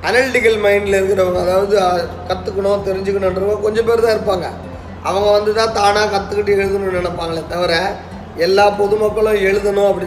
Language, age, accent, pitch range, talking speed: Tamil, 30-49, native, 180-215 Hz, 130 wpm